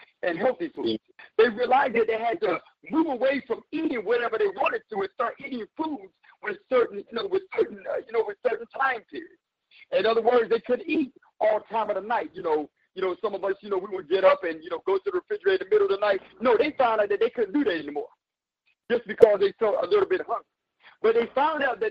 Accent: American